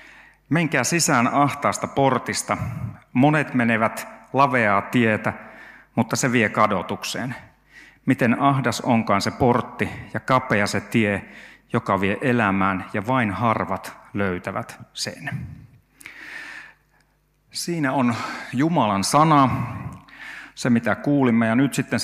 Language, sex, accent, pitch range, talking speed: Finnish, male, native, 105-130 Hz, 105 wpm